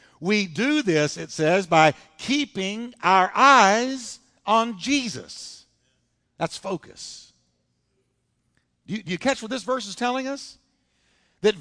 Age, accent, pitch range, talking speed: 60-79, American, 130-220 Hz, 125 wpm